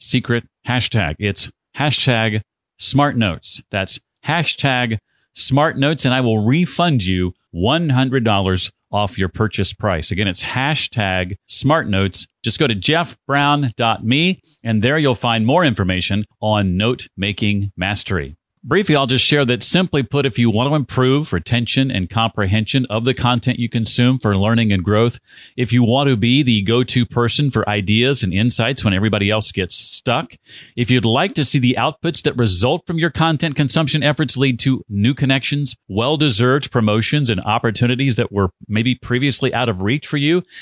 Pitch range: 110-140 Hz